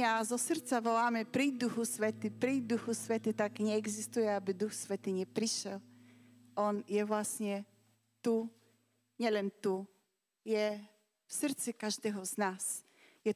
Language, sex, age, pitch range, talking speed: Slovak, female, 40-59, 210-255 Hz, 130 wpm